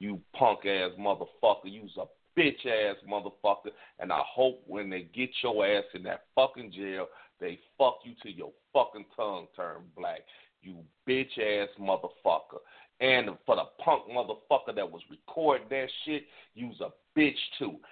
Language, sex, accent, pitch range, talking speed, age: English, male, American, 100-135 Hz, 150 wpm, 40-59